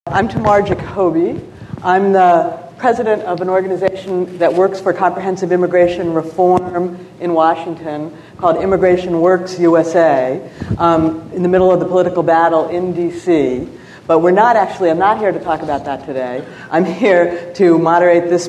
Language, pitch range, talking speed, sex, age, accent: English, 165-190 Hz, 155 wpm, female, 60-79, American